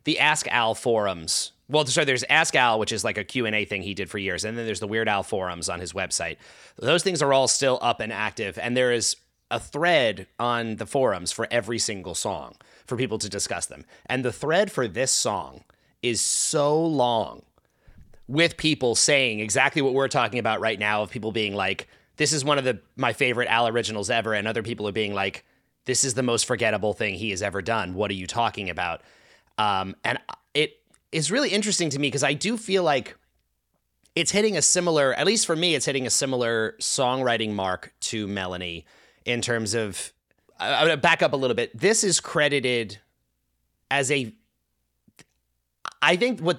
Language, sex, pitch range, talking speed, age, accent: English, male, 105-140 Hz, 200 wpm, 30-49, American